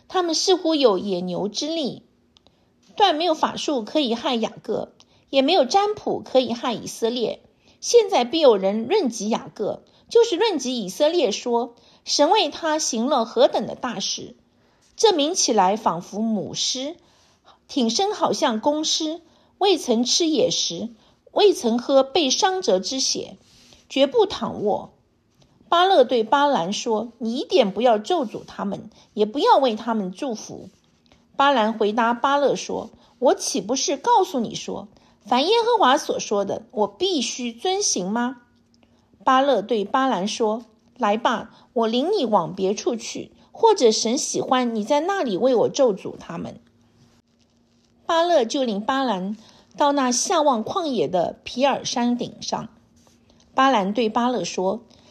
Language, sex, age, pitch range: English, female, 50-69, 220-315 Hz